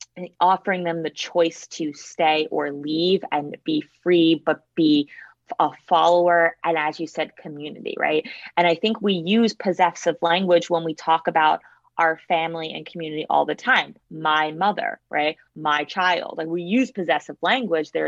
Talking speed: 165 wpm